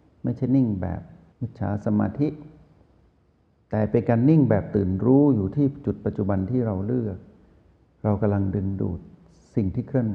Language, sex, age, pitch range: Thai, male, 60-79, 95-120 Hz